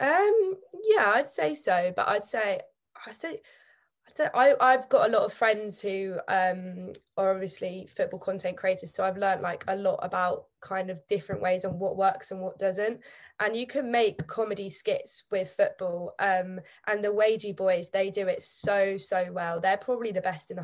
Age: 20-39